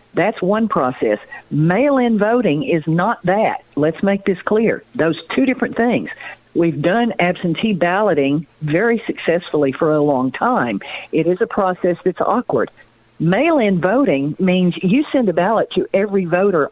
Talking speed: 150 wpm